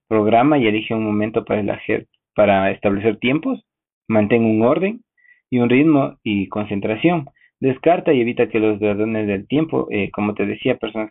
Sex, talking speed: male, 165 wpm